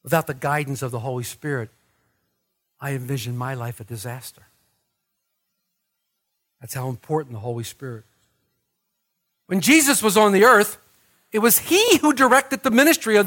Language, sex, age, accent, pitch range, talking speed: English, male, 50-69, American, 180-255 Hz, 155 wpm